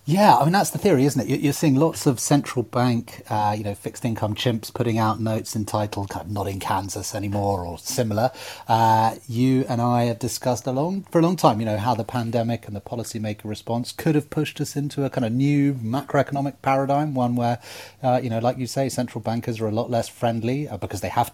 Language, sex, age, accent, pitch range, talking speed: English, male, 30-49, British, 110-135 Hz, 230 wpm